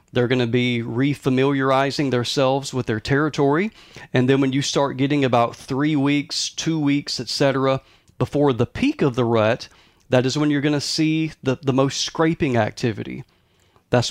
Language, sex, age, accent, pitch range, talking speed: English, male, 40-59, American, 120-145 Hz, 160 wpm